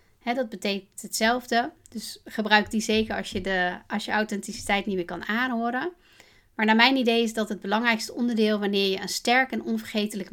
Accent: Dutch